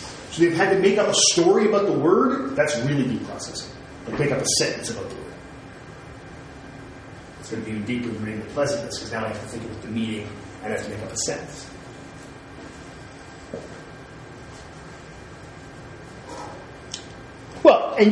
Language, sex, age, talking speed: English, male, 30-49, 170 wpm